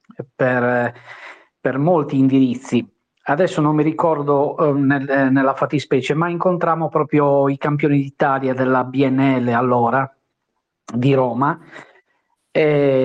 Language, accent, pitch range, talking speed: Italian, native, 125-150 Hz, 115 wpm